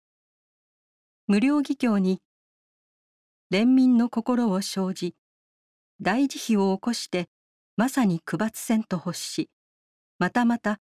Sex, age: female, 40-59